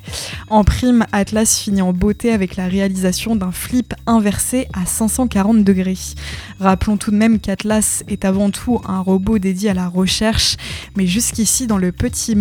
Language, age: French, 20-39